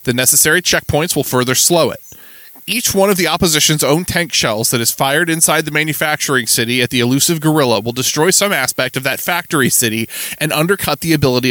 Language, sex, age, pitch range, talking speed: English, male, 20-39, 125-170 Hz, 200 wpm